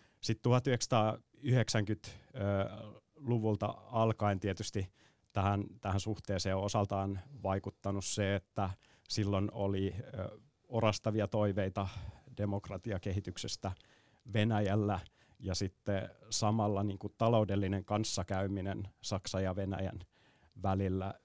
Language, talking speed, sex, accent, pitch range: Finnish, 80 wpm, male, native, 100-110 Hz